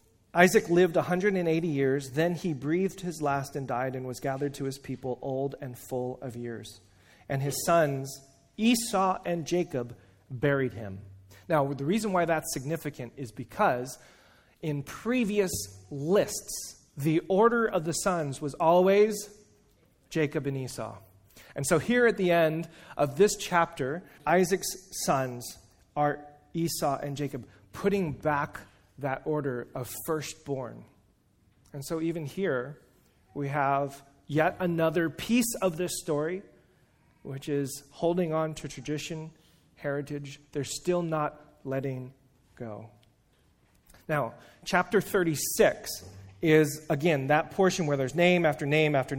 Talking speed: 135 wpm